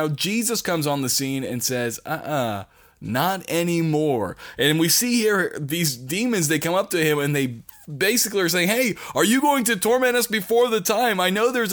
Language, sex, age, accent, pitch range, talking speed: English, male, 20-39, American, 145-200 Hz, 205 wpm